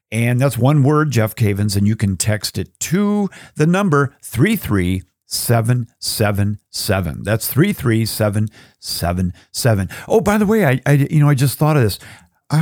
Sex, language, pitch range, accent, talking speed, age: male, English, 100-130 Hz, American, 145 wpm, 50-69